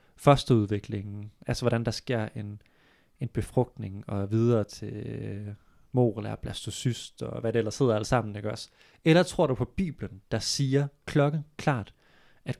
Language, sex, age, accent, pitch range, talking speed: Danish, male, 20-39, native, 115-145 Hz, 150 wpm